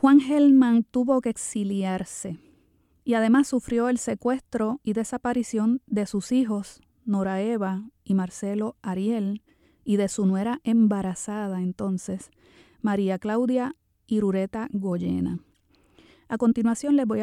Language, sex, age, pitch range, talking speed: Spanish, female, 30-49, 180-230 Hz, 120 wpm